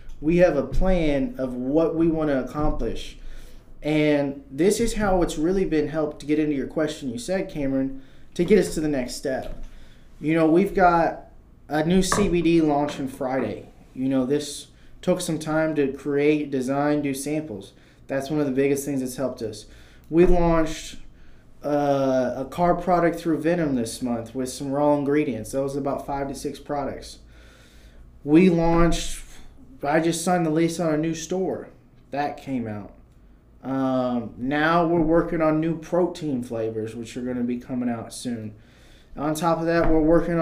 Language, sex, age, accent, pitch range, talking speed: English, male, 20-39, American, 135-170 Hz, 180 wpm